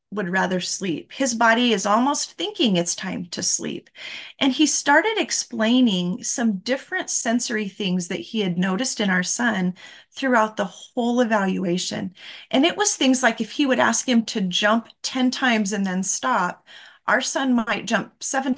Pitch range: 190-265 Hz